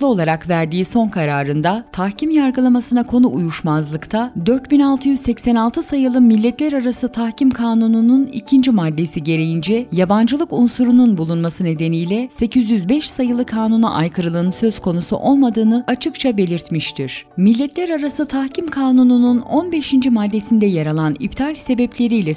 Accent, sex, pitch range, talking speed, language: native, female, 175-255 Hz, 105 wpm, Turkish